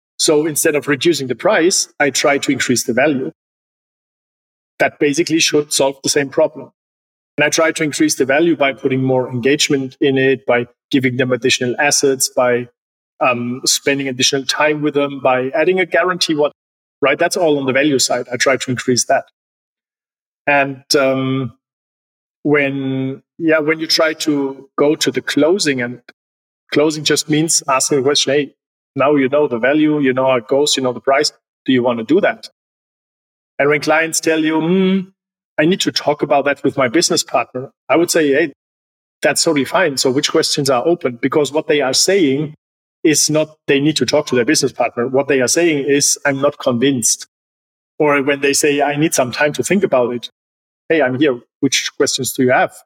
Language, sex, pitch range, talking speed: English, male, 125-150 Hz, 195 wpm